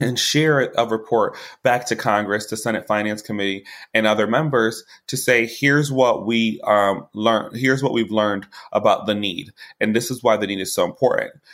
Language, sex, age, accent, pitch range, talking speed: English, male, 20-39, American, 105-120 Hz, 190 wpm